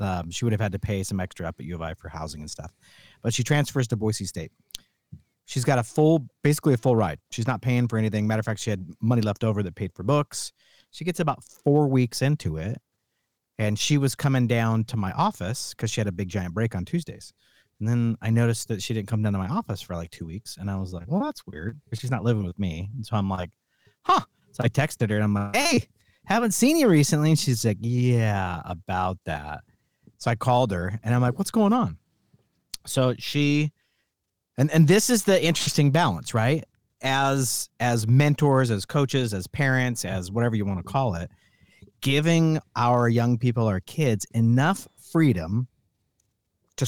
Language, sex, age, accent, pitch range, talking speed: English, male, 40-59, American, 105-140 Hz, 215 wpm